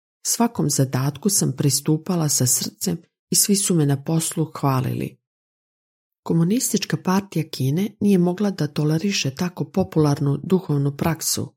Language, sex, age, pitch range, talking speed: Croatian, female, 40-59, 140-175 Hz, 125 wpm